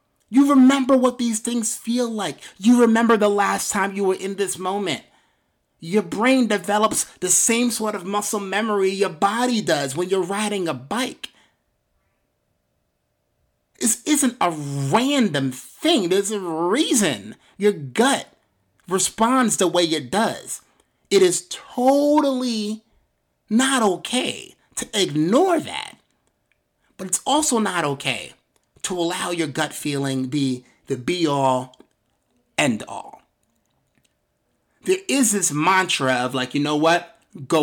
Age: 30-49